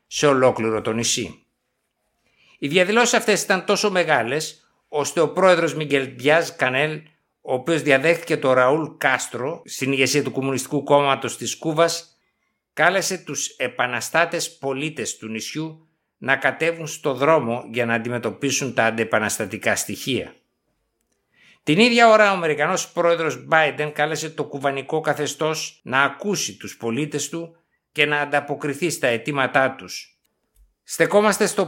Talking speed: 125 wpm